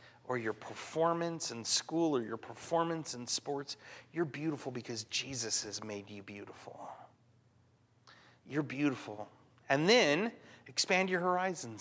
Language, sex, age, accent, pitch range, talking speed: English, male, 30-49, American, 110-140 Hz, 125 wpm